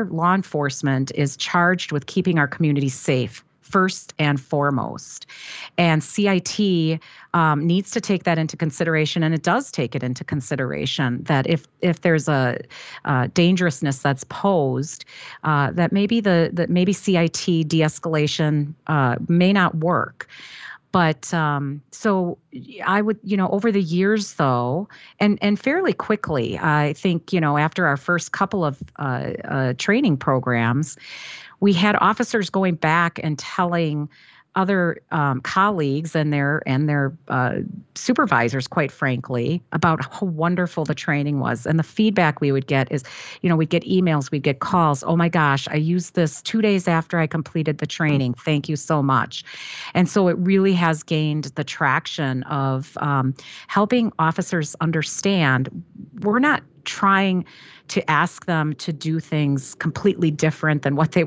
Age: 40-59